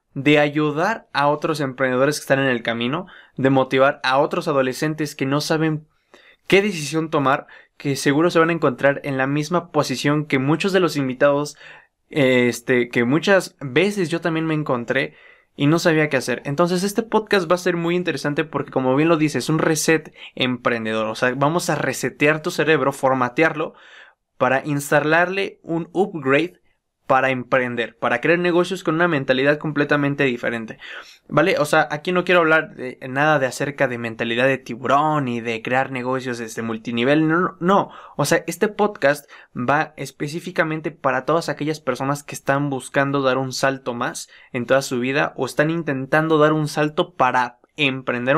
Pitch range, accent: 130-160 Hz, Mexican